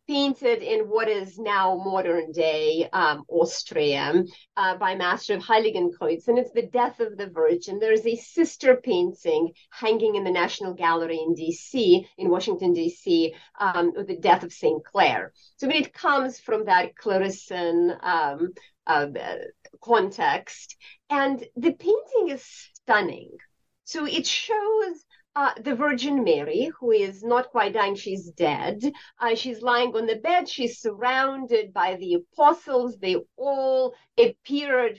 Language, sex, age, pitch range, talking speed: English, female, 40-59, 195-285 Hz, 140 wpm